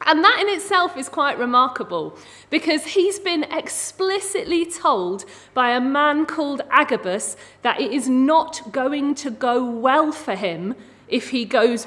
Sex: female